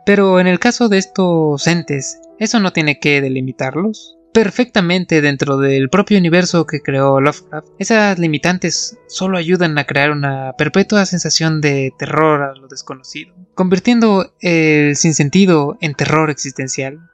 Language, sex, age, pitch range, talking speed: Spanish, male, 20-39, 145-190 Hz, 140 wpm